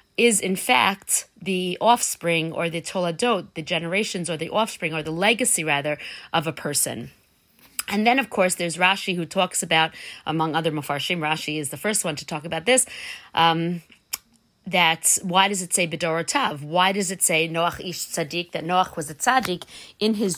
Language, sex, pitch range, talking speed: English, female, 170-230 Hz, 185 wpm